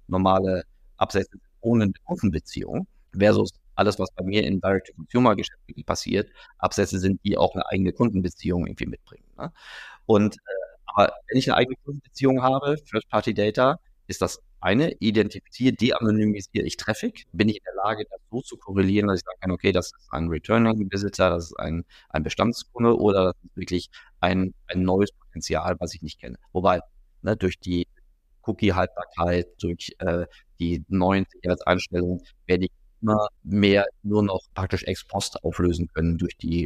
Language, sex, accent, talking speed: German, male, German, 160 wpm